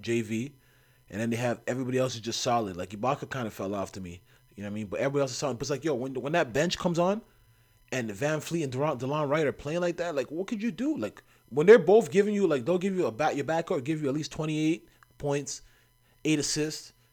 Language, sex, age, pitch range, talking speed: English, male, 30-49, 130-200 Hz, 275 wpm